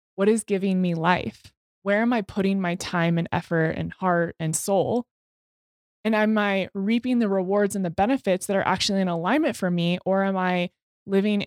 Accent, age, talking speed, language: American, 20-39, 195 wpm, English